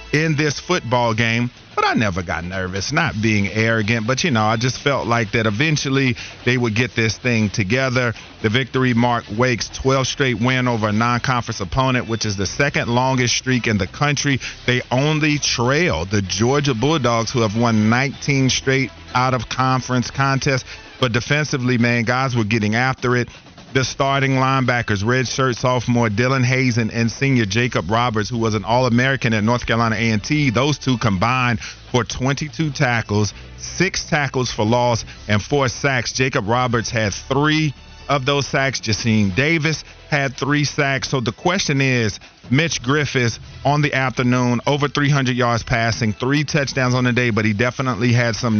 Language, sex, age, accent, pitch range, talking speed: English, male, 40-59, American, 115-135 Hz, 170 wpm